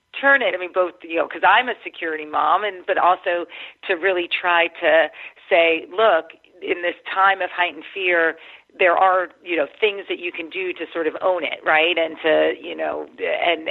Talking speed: 210 wpm